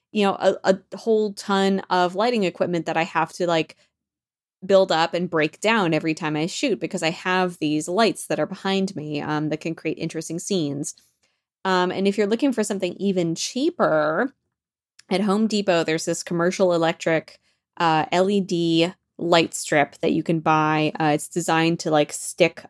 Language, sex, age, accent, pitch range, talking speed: English, female, 20-39, American, 155-190 Hz, 180 wpm